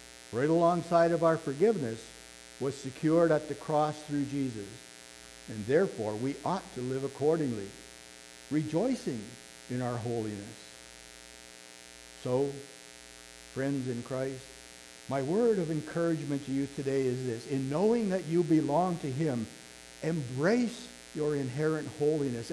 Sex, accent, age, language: male, American, 60-79, English